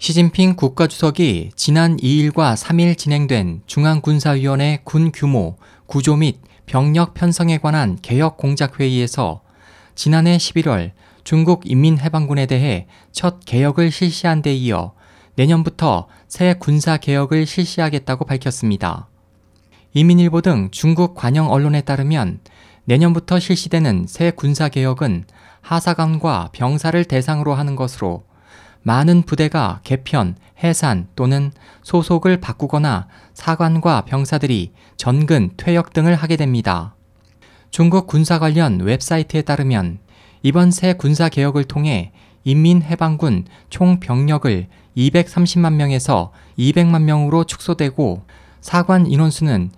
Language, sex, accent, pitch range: Korean, male, native, 110-165 Hz